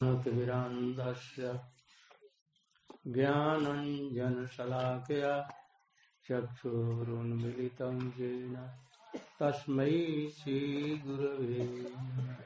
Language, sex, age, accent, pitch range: Hindi, male, 60-79, native, 125-150 Hz